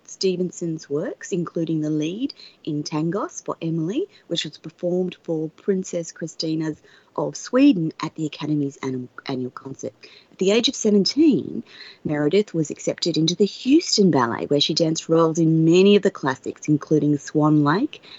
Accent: Australian